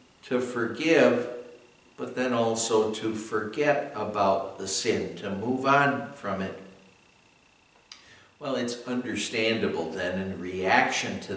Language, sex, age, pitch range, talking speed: English, male, 60-79, 105-130 Hz, 115 wpm